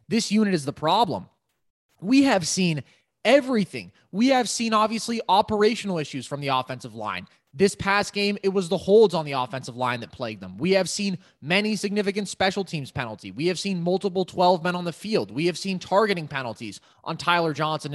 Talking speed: 195 wpm